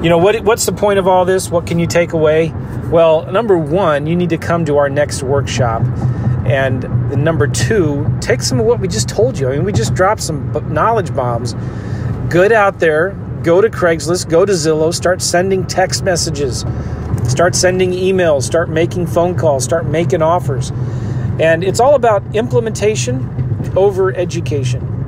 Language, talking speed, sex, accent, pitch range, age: English, 175 wpm, male, American, 125-170 Hz, 40-59